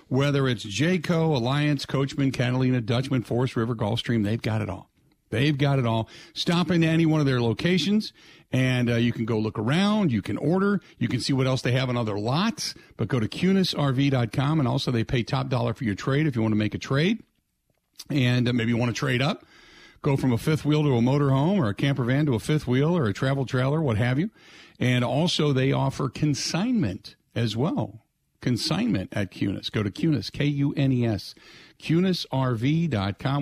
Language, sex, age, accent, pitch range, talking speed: English, male, 50-69, American, 115-150 Hz, 210 wpm